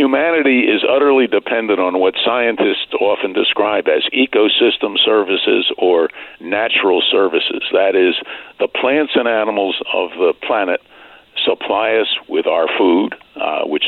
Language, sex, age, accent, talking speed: English, male, 60-79, American, 135 wpm